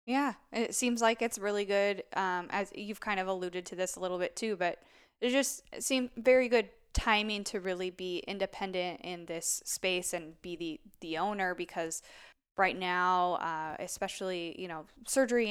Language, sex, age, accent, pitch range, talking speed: English, female, 10-29, American, 180-220 Hz, 180 wpm